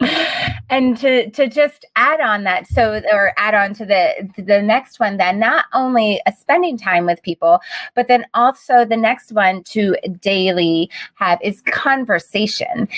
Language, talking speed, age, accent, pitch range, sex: English, 160 wpm, 30-49, American, 180-230 Hz, female